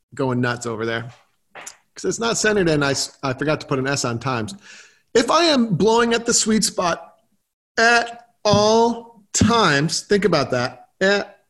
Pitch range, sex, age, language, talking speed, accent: 155-210 Hz, male, 40-59, English, 170 wpm, American